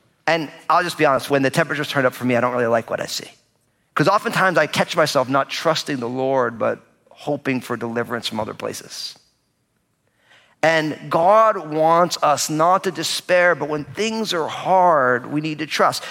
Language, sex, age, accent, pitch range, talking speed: English, male, 40-59, American, 120-160 Hz, 190 wpm